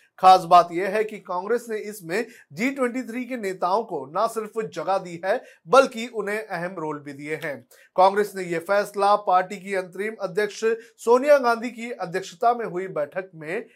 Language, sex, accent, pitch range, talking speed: Hindi, male, native, 170-225 Hz, 175 wpm